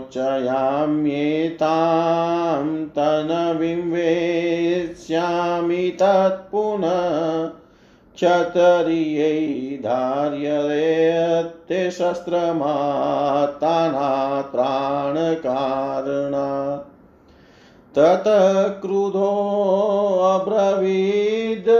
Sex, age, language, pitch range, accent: male, 50-69, Hindi, 140-170 Hz, native